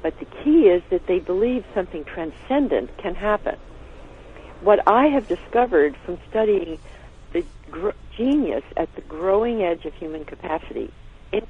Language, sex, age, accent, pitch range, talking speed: English, female, 60-79, American, 140-200 Hz, 145 wpm